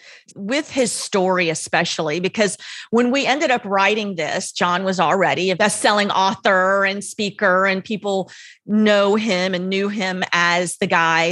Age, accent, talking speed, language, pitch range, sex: 30-49, American, 160 wpm, English, 175-210 Hz, female